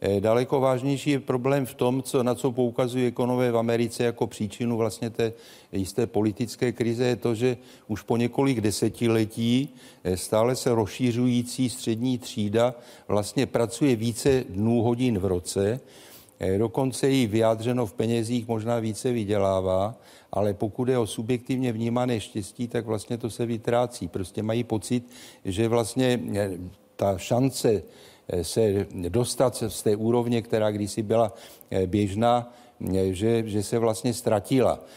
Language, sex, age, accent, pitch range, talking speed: Czech, male, 50-69, native, 105-125 Hz, 135 wpm